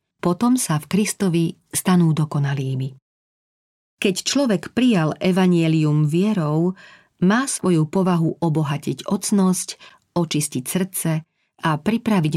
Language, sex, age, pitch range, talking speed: Slovak, female, 40-59, 155-185 Hz, 95 wpm